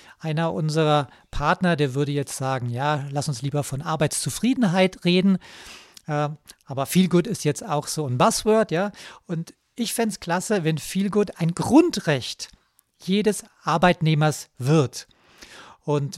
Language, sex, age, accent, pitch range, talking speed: German, male, 40-59, German, 155-195 Hz, 135 wpm